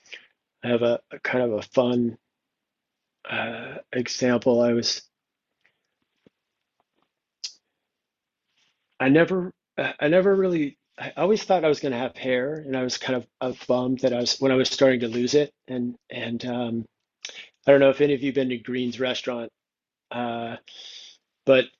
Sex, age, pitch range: male, 40-59, 125-145 Hz